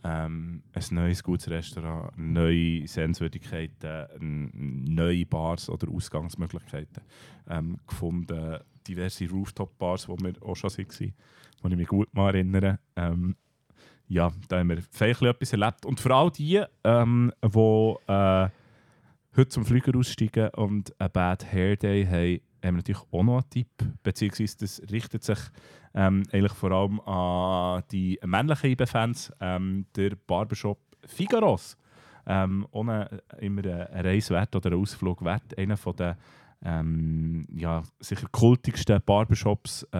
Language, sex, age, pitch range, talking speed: German, male, 30-49, 90-110 Hz, 135 wpm